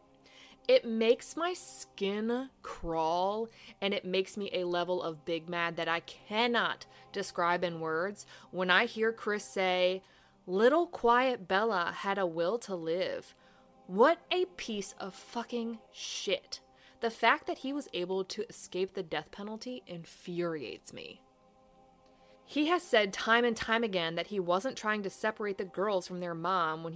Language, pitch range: English, 175-235 Hz